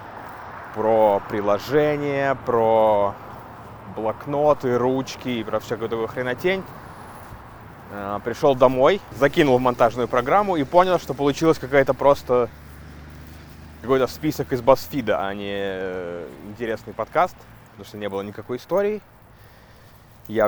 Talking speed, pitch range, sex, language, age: 110 wpm, 100-130 Hz, male, Russian, 20-39